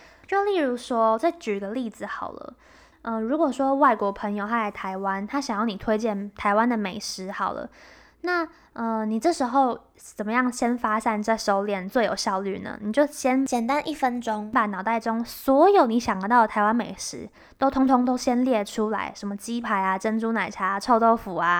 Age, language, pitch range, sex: 10-29, Chinese, 210-260 Hz, female